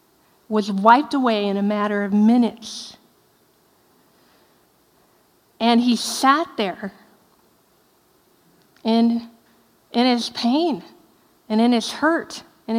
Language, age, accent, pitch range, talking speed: English, 40-59, American, 210-260 Hz, 100 wpm